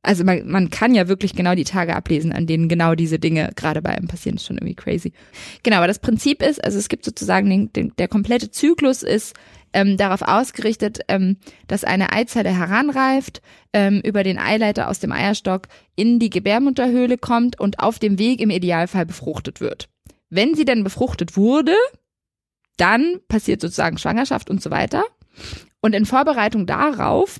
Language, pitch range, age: German, 185-245 Hz, 20-39